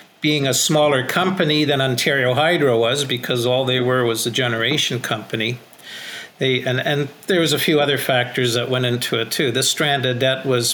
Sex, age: male, 50-69